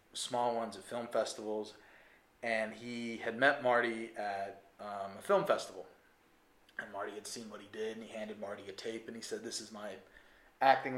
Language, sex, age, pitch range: English, male, 20-39, 110-130 Hz